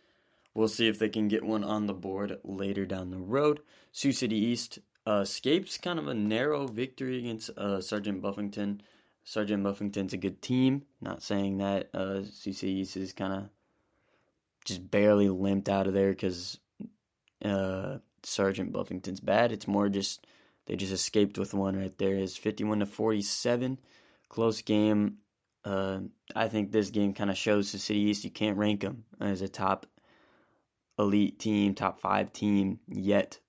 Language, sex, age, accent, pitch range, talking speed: English, male, 20-39, American, 100-110 Hz, 170 wpm